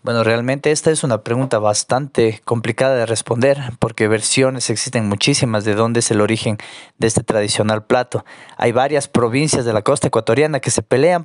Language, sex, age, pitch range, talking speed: Spanish, male, 20-39, 115-135 Hz, 175 wpm